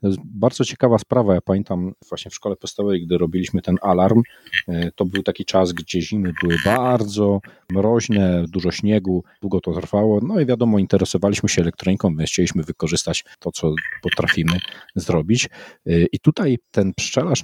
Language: Polish